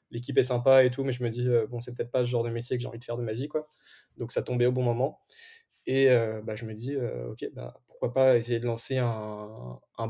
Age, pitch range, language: 20-39, 115-125 Hz, French